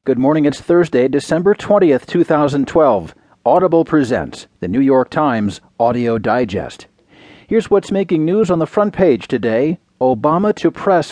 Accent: American